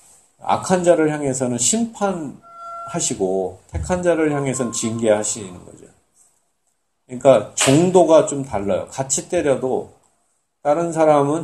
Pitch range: 110-165 Hz